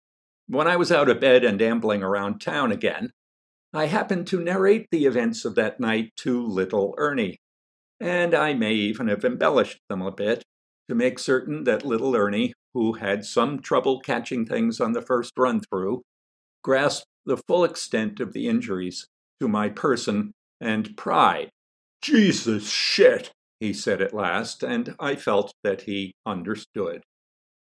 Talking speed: 160 wpm